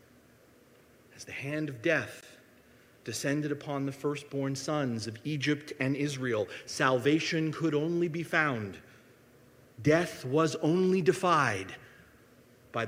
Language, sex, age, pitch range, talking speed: English, male, 40-59, 130-175 Hz, 105 wpm